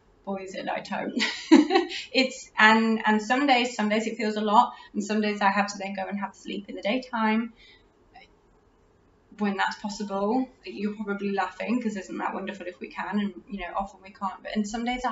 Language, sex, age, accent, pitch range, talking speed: English, female, 20-39, British, 200-250 Hz, 205 wpm